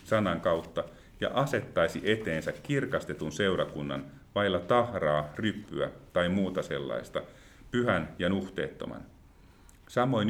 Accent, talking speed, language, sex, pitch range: native, 100 wpm, Finnish, male, 85-110 Hz